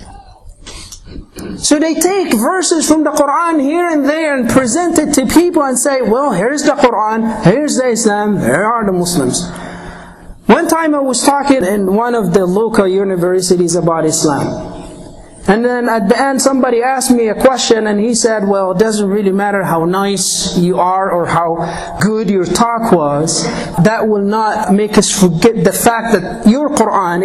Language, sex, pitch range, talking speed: English, male, 195-275 Hz, 175 wpm